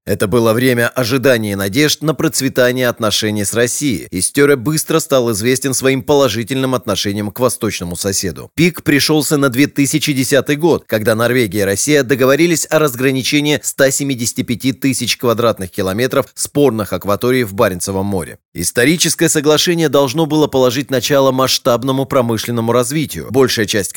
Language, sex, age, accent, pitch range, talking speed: Russian, male, 30-49, native, 115-145 Hz, 135 wpm